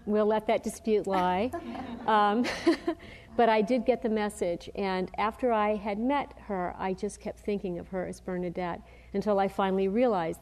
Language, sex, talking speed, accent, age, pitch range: English, female, 175 wpm, American, 50-69, 185-220 Hz